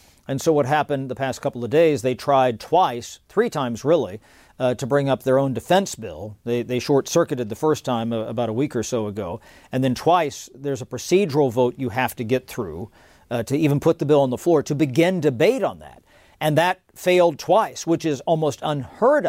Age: 50-69